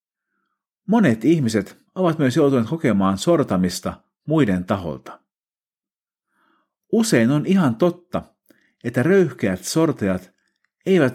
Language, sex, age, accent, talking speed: Finnish, male, 50-69, native, 90 wpm